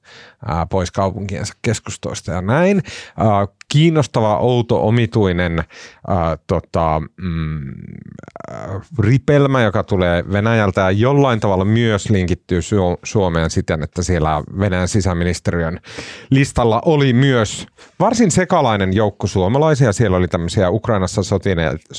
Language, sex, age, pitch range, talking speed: Finnish, male, 30-49, 90-120 Hz, 105 wpm